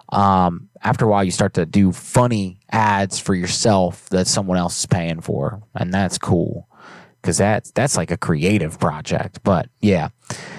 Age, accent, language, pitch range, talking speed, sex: 20-39, American, English, 100-140 Hz, 170 wpm, male